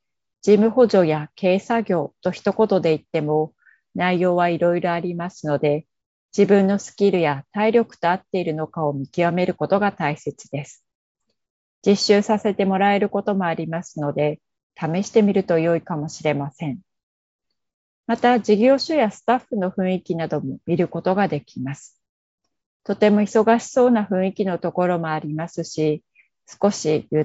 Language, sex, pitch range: Japanese, female, 155-205 Hz